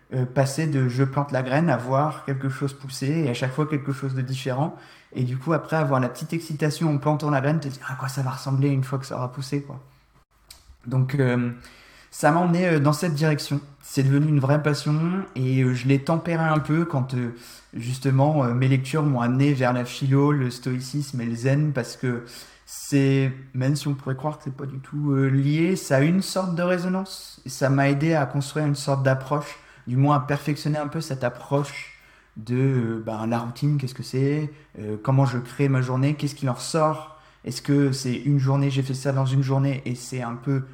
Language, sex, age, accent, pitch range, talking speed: French, male, 20-39, French, 130-150 Hz, 220 wpm